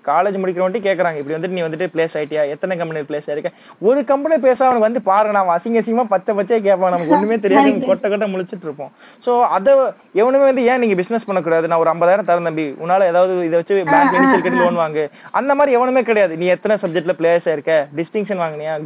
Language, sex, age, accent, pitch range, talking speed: Tamil, male, 20-39, native, 170-235 Hz, 165 wpm